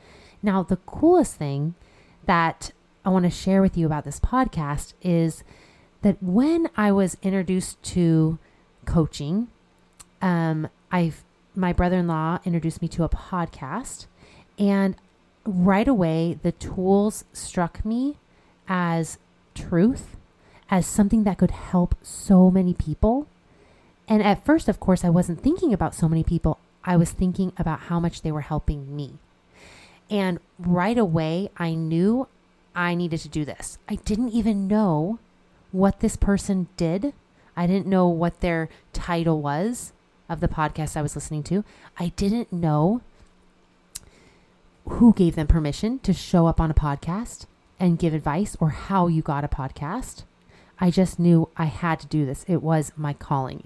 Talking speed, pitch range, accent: 150 wpm, 160-200 Hz, American